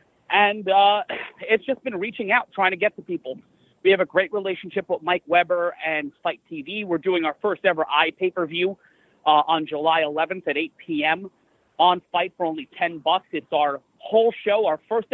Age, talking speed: 30-49, 185 wpm